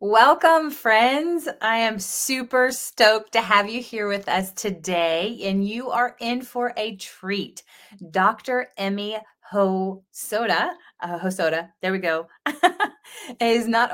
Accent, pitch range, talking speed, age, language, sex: American, 180-240 Hz, 130 wpm, 30-49, English, female